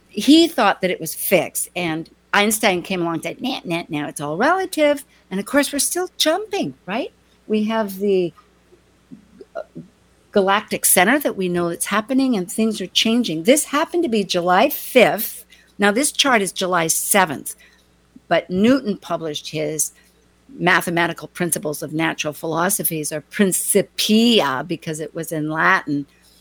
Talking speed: 155 wpm